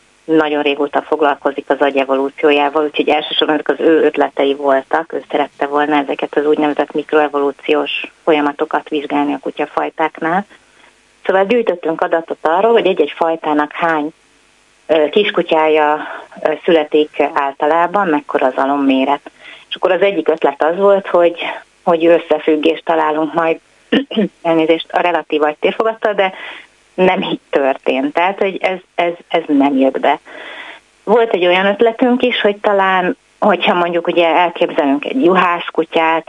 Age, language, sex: 30-49, Hungarian, female